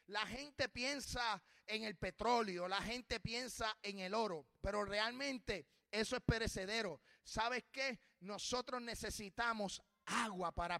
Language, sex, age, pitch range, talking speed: Spanish, male, 30-49, 200-250 Hz, 130 wpm